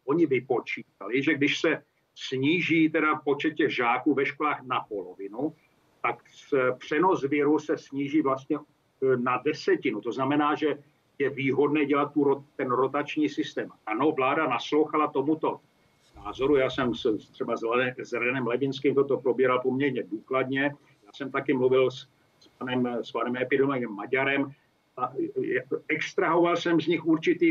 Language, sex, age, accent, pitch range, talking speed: Czech, male, 50-69, native, 135-160 Hz, 145 wpm